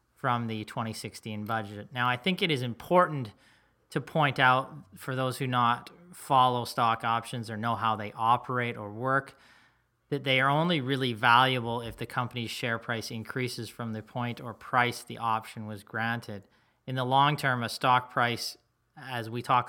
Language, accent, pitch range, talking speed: English, American, 110-130 Hz, 175 wpm